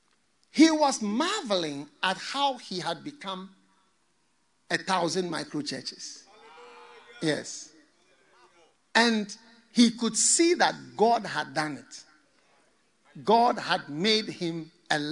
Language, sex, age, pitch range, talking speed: English, male, 50-69, 145-240 Hz, 105 wpm